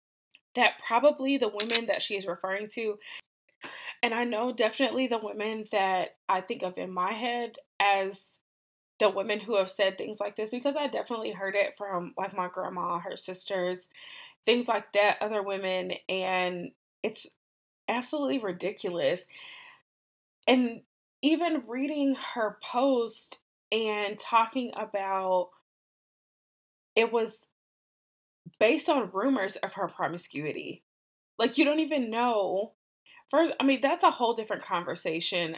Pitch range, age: 190-245 Hz, 20-39